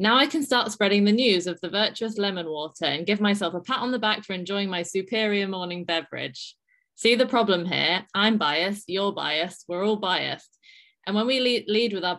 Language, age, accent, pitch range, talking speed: English, 20-39, British, 175-210 Hz, 210 wpm